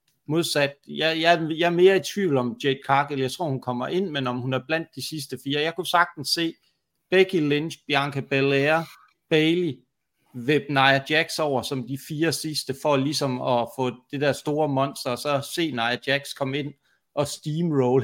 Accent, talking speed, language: native, 190 wpm, Danish